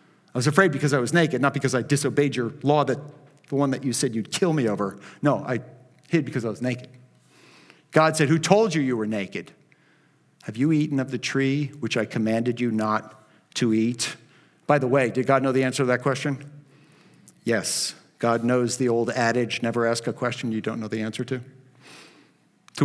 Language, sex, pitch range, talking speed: English, male, 135-220 Hz, 205 wpm